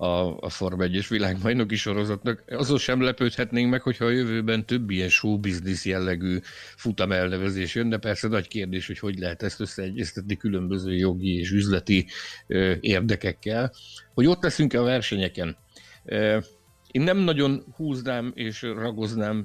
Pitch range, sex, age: 95-115 Hz, male, 60-79